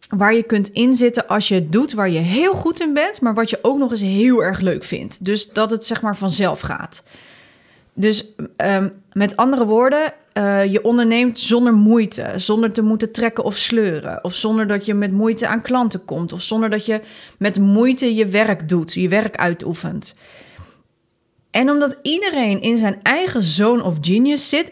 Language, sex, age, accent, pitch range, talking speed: Dutch, female, 30-49, Dutch, 195-250 Hz, 185 wpm